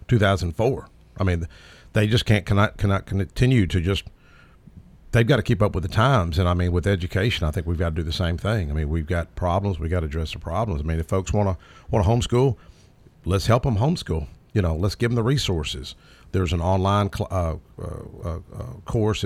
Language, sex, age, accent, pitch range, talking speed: English, male, 50-69, American, 85-110 Hz, 225 wpm